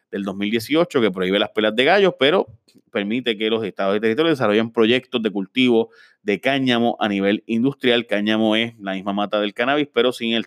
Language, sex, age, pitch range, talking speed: Spanish, male, 30-49, 100-125 Hz, 195 wpm